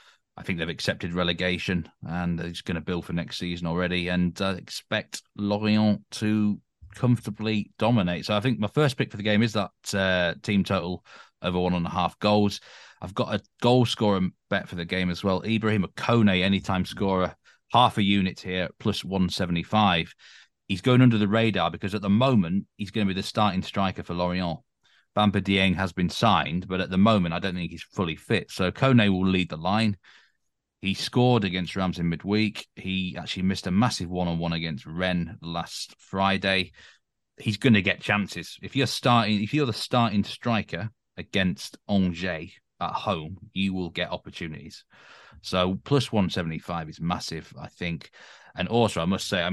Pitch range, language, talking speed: 90-105 Hz, English, 185 wpm